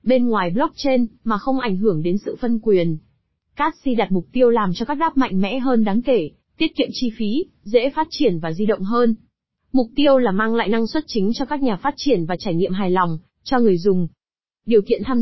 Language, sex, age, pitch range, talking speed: Vietnamese, female, 20-39, 205-250 Hz, 235 wpm